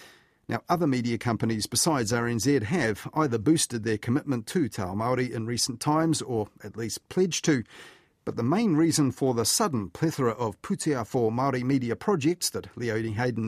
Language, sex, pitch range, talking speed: English, male, 115-150 Hz, 180 wpm